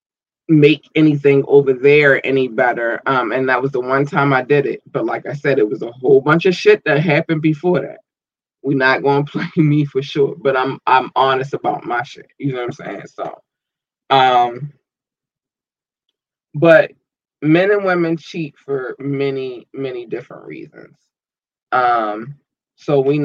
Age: 20-39